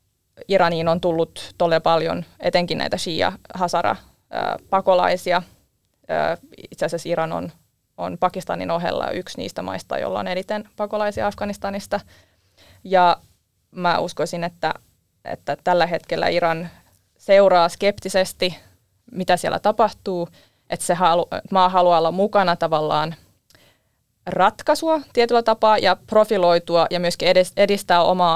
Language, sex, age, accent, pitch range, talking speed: Finnish, female, 20-39, native, 165-185 Hz, 110 wpm